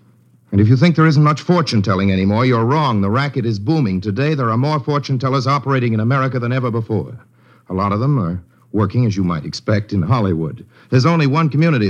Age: 60-79